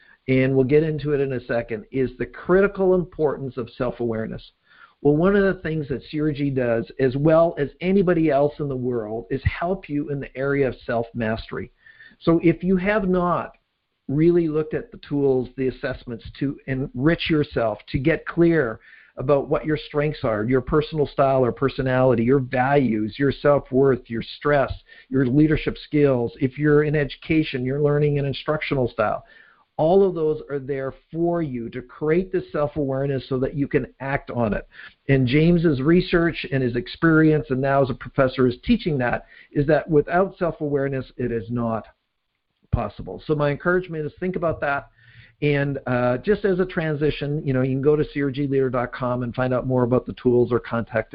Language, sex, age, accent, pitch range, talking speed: English, male, 50-69, American, 125-155 Hz, 180 wpm